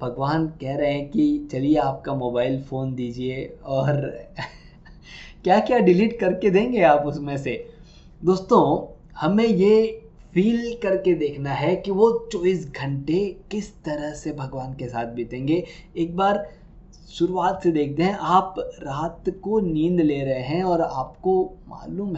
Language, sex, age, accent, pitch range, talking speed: Hindi, male, 20-39, native, 150-195 Hz, 145 wpm